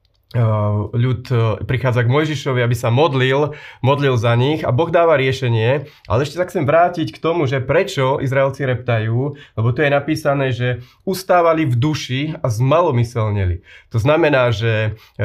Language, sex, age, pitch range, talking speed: Slovak, male, 30-49, 115-150 Hz, 150 wpm